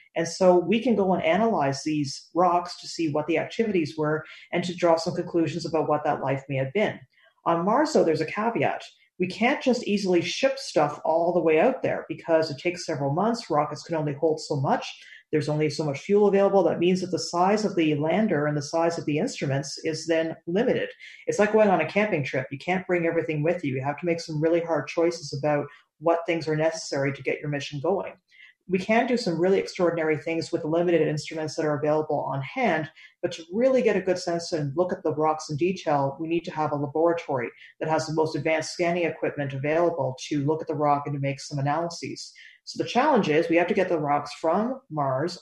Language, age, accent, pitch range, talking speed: English, 40-59, American, 150-175 Hz, 230 wpm